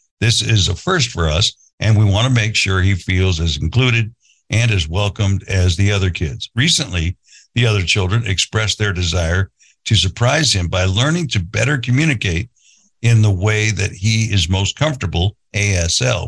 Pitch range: 95-115 Hz